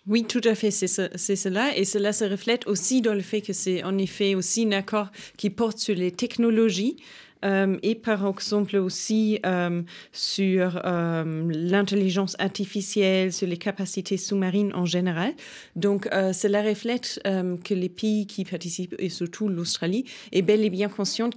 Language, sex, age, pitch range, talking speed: French, female, 30-49, 180-220 Hz, 175 wpm